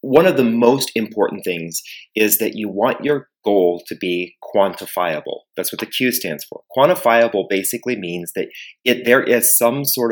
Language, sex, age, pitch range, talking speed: English, male, 30-49, 95-120 Hz, 180 wpm